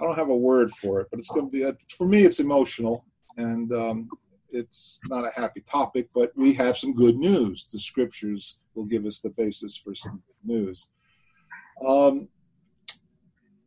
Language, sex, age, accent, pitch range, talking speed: English, male, 50-69, American, 115-160 Hz, 185 wpm